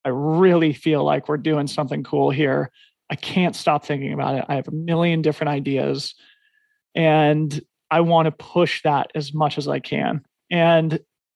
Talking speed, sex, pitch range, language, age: 175 wpm, male, 150-170 Hz, English, 30-49